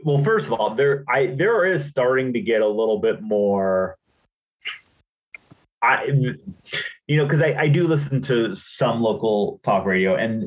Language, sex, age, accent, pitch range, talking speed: English, male, 30-49, American, 110-140 Hz, 165 wpm